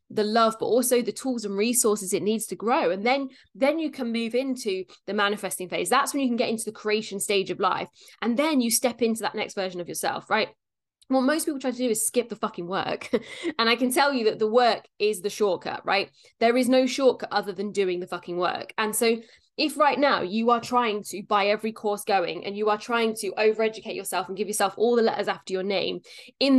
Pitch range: 190-230 Hz